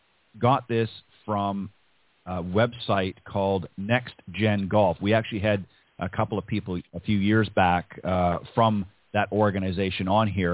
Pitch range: 95-115 Hz